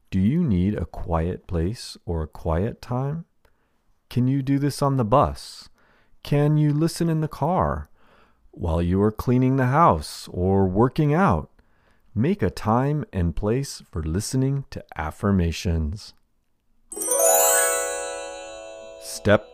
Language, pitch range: Spanish, 80-120 Hz